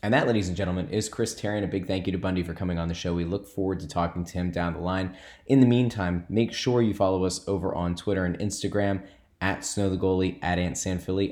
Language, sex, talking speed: English, male, 245 wpm